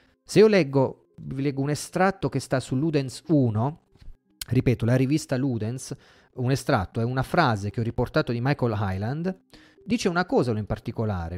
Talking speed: 170 wpm